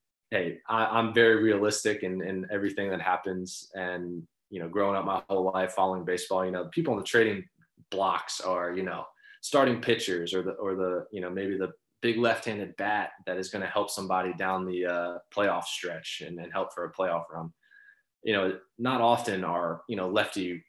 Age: 20-39